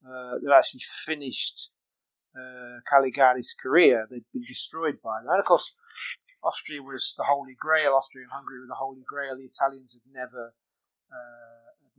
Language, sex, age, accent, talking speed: English, male, 30-49, British, 160 wpm